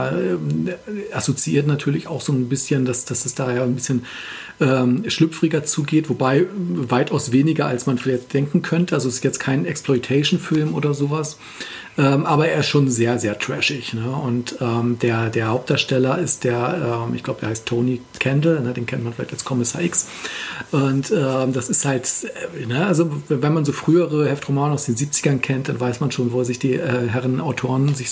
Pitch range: 125-160 Hz